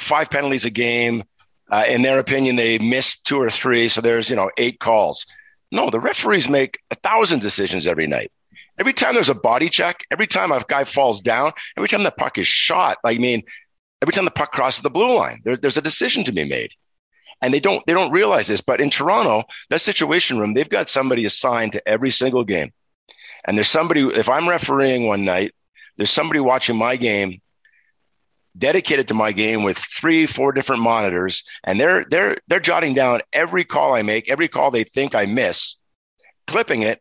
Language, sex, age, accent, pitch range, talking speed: English, male, 50-69, American, 110-145 Hz, 200 wpm